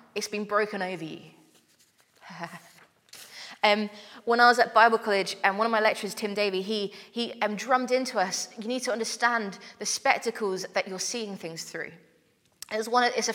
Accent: British